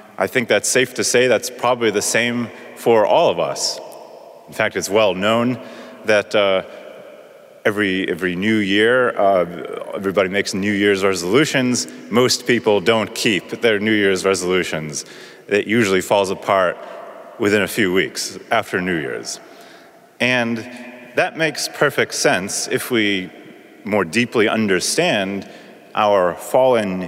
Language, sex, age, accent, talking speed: English, male, 30-49, American, 135 wpm